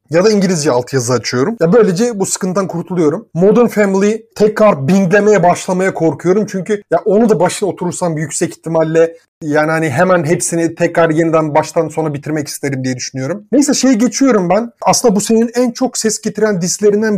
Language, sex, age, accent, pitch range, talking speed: Turkish, male, 30-49, native, 165-210 Hz, 170 wpm